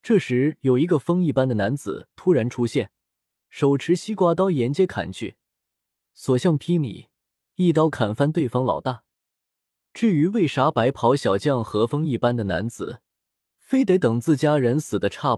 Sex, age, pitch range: male, 20-39, 110-165 Hz